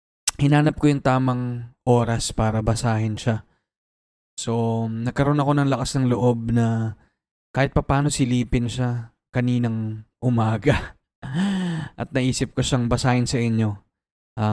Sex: male